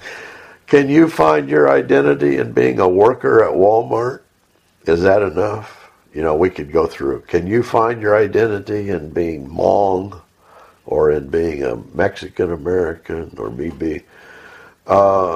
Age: 60-79